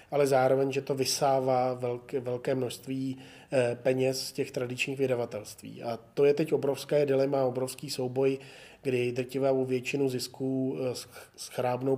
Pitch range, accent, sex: 125-135 Hz, native, male